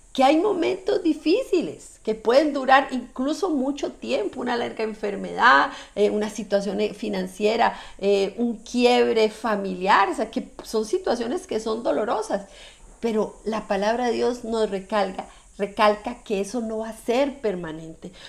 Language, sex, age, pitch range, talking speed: Spanish, female, 50-69, 210-275 Hz, 145 wpm